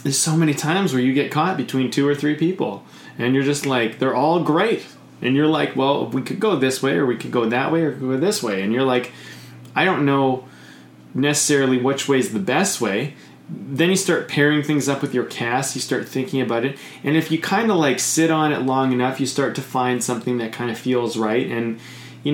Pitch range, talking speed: 120-145 Hz, 240 wpm